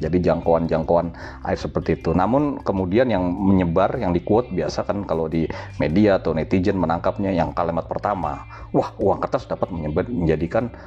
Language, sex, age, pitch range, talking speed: Indonesian, male, 40-59, 85-100 Hz, 155 wpm